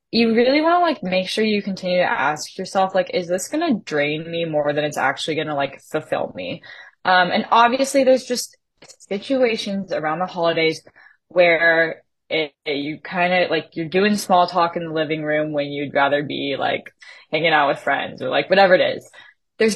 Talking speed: 200 wpm